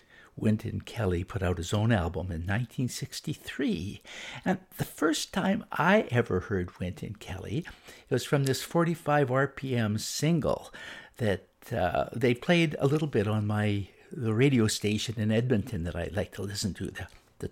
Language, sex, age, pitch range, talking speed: English, male, 60-79, 95-130 Hz, 160 wpm